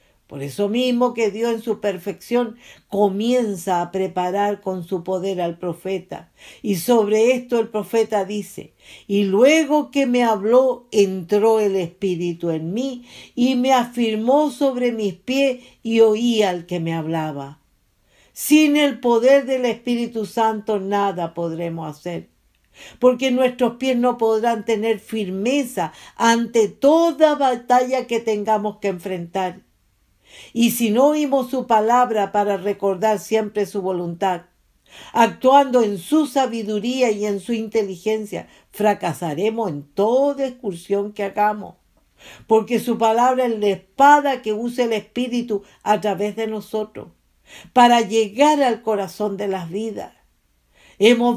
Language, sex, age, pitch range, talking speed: English, female, 50-69, 200-245 Hz, 135 wpm